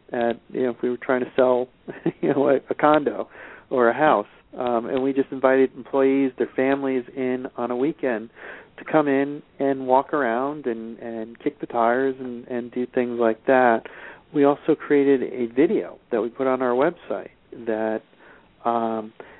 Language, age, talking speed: English, 40-59, 185 wpm